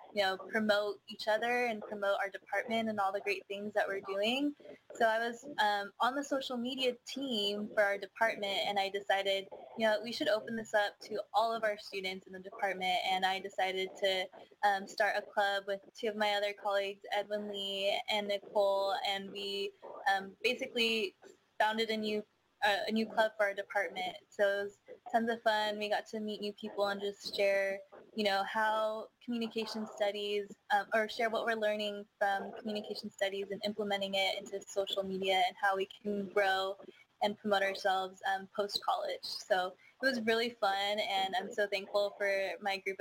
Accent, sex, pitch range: American, female, 195-220 Hz